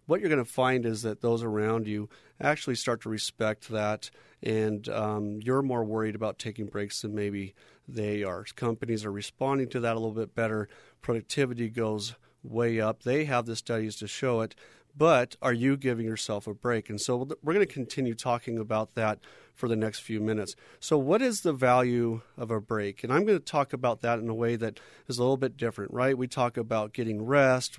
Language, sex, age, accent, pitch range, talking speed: English, male, 40-59, American, 110-130 Hz, 210 wpm